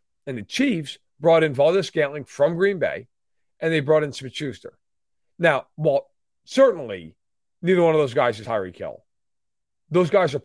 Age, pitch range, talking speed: 40-59, 140-180 Hz, 170 wpm